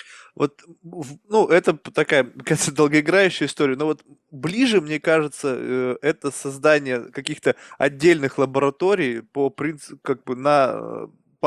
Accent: native